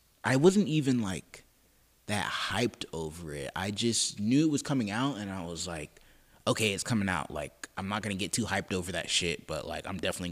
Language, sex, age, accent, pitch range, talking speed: English, male, 20-39, American, 85-110 Hz, 220 wpm